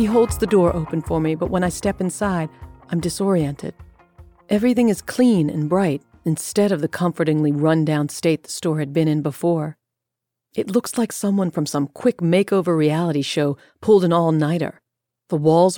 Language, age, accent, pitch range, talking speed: English, 40-59, American, 150-185 Hz, 185 wpm